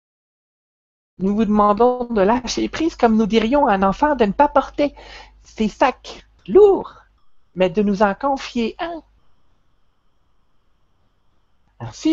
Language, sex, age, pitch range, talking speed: French, male, 60-79, 190-280 Hz, 130 wpm